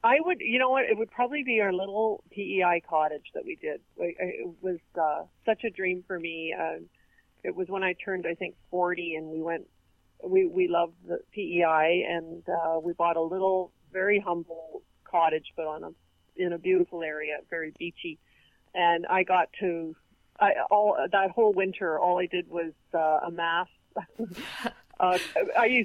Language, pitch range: English, 165-195 Hz